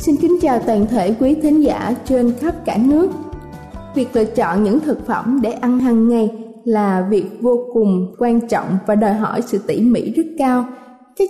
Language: Vietnamese